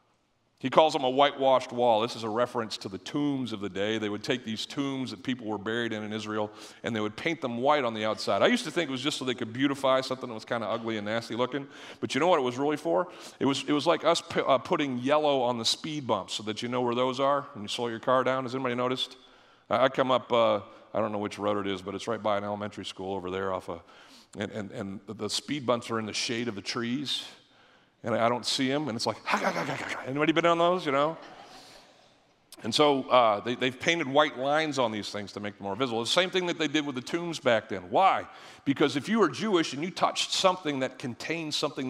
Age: 40-59